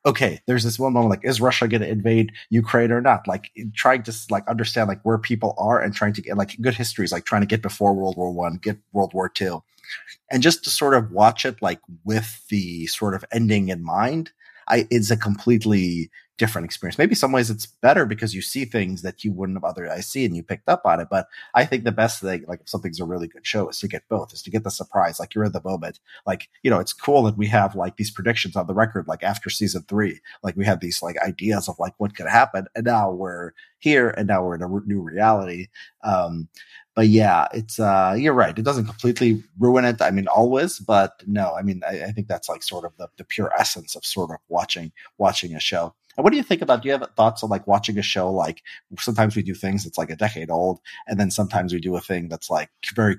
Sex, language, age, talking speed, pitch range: male, English, 30-49, 255 wpm, 95-115 Hz